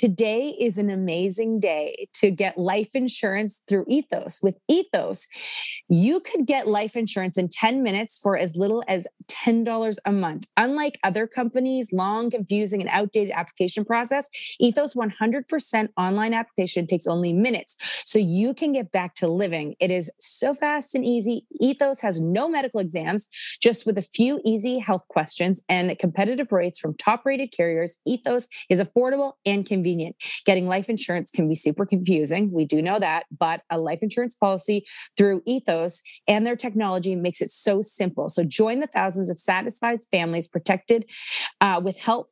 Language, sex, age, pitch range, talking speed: English, female, 30-49, 185-240 Hz, 165 wpm